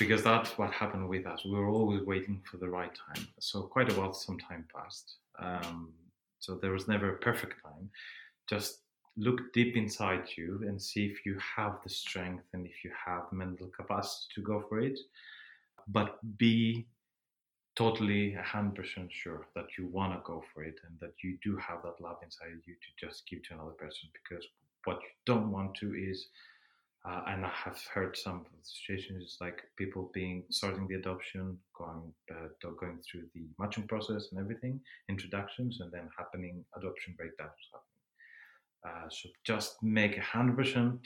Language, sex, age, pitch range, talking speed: English, male, 30-49, 90-110 Hz, 175 wpm